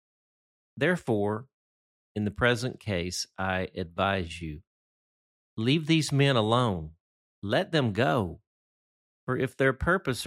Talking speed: 110 wpm